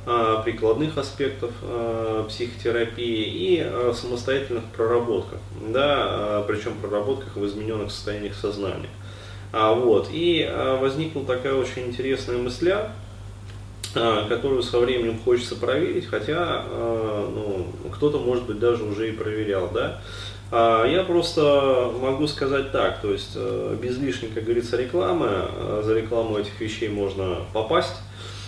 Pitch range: 105-125 Hz